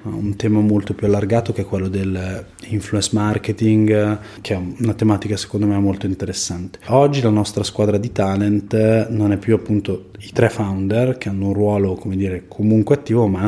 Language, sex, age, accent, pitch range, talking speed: Italian, male, 20-39, native, 100-125 Hz, 185 wpm